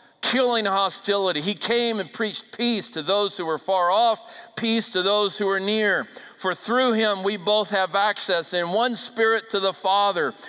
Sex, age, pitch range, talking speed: male, 50-69, 155-230 Hz, 185 wpm